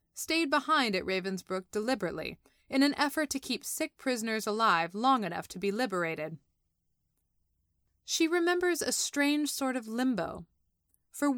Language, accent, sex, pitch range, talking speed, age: English, American, female, 185-260 Hz, 135 wpm, 20-39